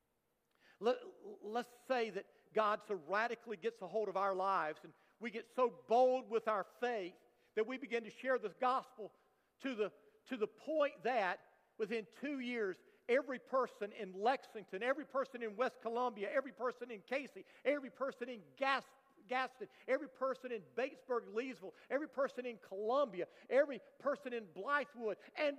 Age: 50-69